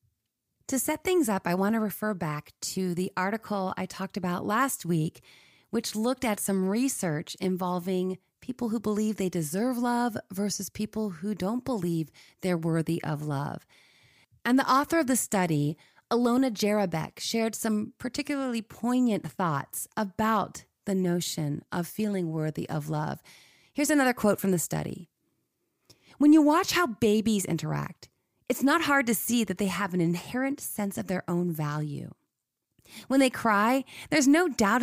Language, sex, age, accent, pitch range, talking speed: English, female, 30-49, American, 175-245 Hz, 160 wpm